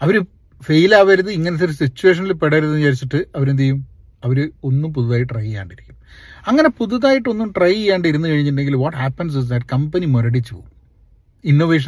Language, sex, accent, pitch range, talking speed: Malayalam, male, native, 120-180 Hz, 135 wpm